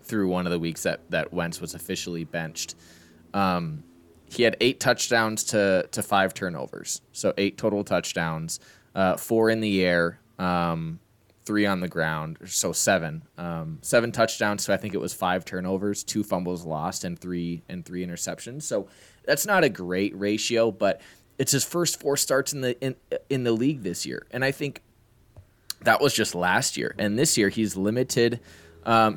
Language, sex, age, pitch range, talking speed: English, male, 20-39, 90-115 Hz, 180 wpm